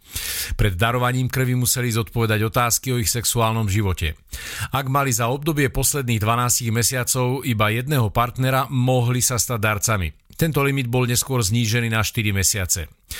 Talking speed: 145 wpm